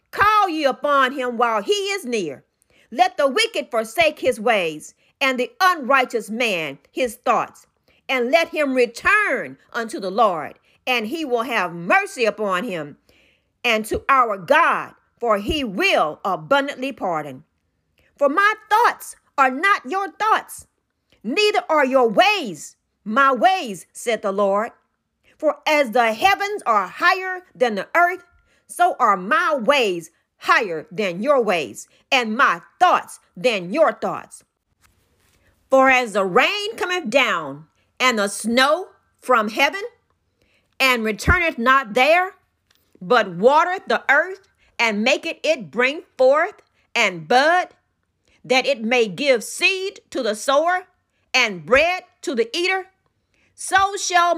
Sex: female